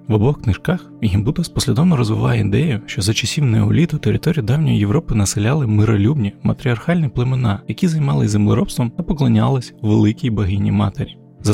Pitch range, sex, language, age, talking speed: 110-150 Hz, male, Ukrainian, 20-39, 135 wpm